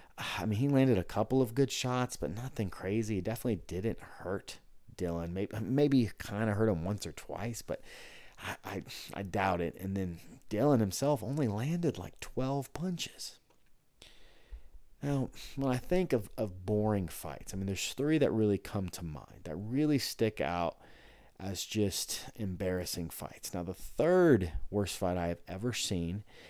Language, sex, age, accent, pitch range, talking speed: English, male, 30-49, American, 90-120 Hz, 170 wpm